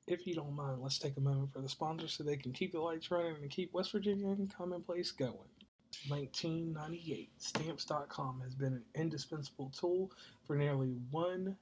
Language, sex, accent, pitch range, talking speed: English, male, American, 140-170 Hz, 180 wpm